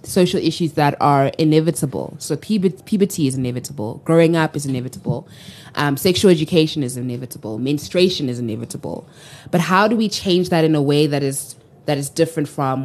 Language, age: English, 20-39